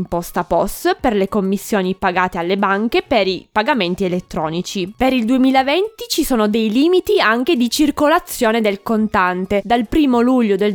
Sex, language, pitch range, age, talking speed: female, Italian, 200-270 Hz, 20-39, 155 wpm